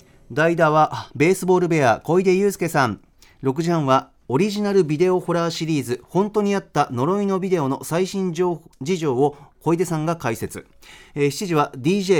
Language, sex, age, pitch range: Japanese, male, 40-59, 130-175 Hz